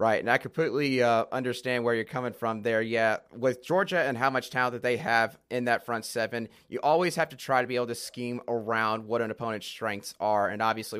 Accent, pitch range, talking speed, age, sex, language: American, 115-190 Hz, 235 wpm, 30-49, male, English